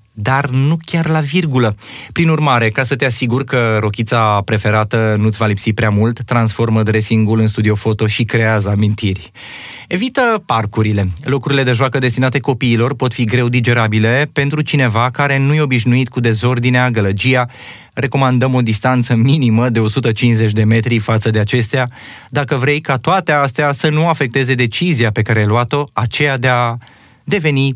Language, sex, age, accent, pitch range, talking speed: Romanian, male, 20-39, native, 110-135 Hz, 160 wpm